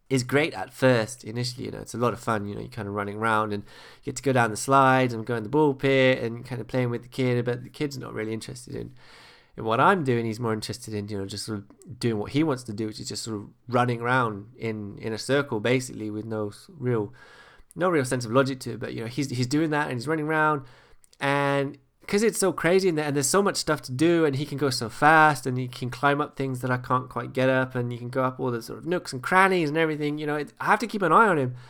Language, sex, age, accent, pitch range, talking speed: English, male, 20-39, British, 120-155 Hz, 290 wpm